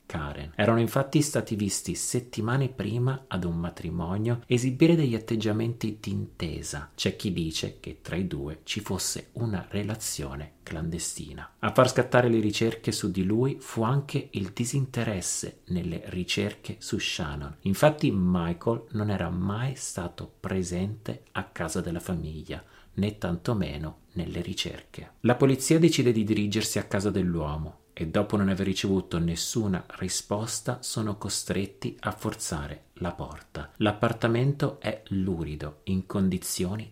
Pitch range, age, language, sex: 90-120 Hz, 40-59, Italian, male